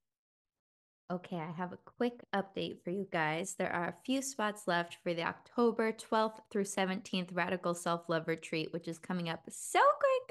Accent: American